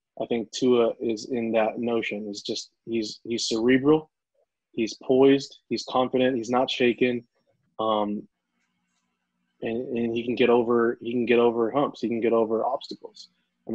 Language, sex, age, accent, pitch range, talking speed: English, male, 20-39, American, 115-130 Hz, 160 wpm